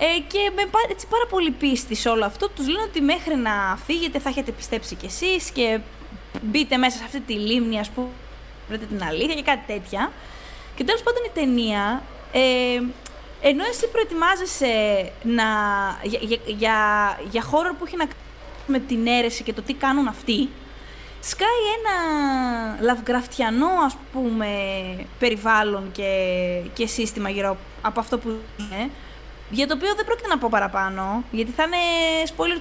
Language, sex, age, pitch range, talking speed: Greek, female, 20-39, 220-315 Hz, 160 wpm